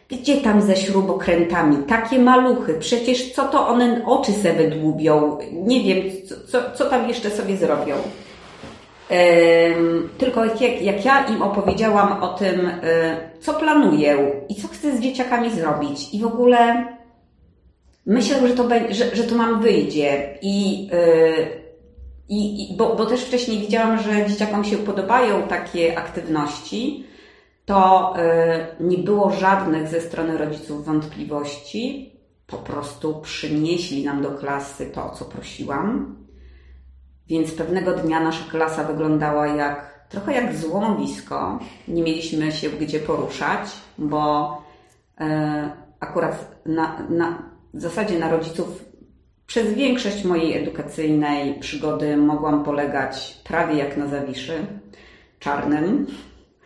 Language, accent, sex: Polish, native, female